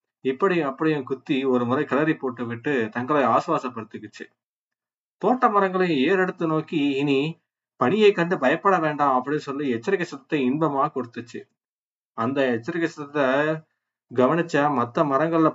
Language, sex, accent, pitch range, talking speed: Tamil, male, native, 130-165 Hz, 120 wpm